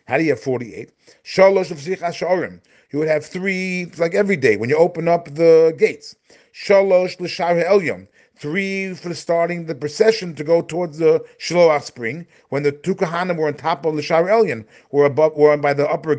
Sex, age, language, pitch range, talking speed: male, 40-59, English, 145-180 Hz, 165 wpm